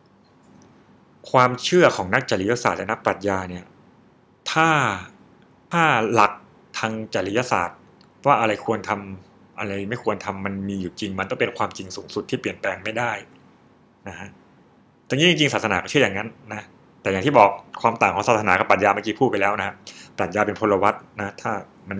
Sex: male